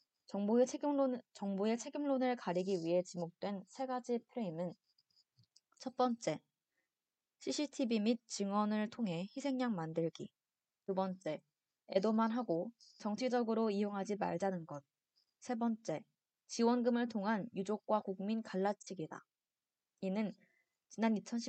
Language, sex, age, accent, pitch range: Korean, female, 20-39, native, 185-250 Hz